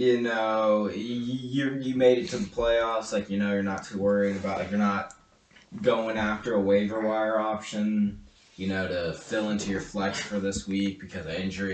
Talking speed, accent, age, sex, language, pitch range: 205 wpm, American, 20-39, male, English, 95-110 Hz